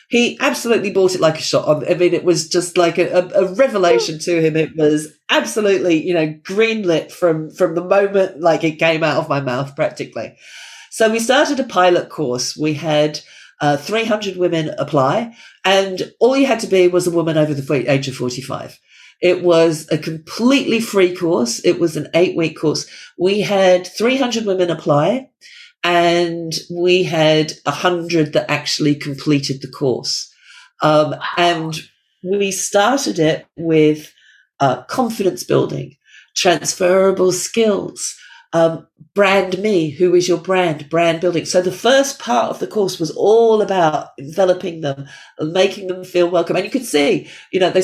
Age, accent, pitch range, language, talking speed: 40-59, British, 155-195 Hz, English, 165 wpm